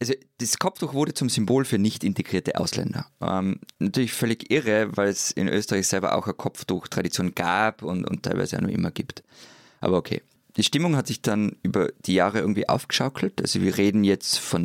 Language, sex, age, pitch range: German, male, 20-39, 95-125 Hz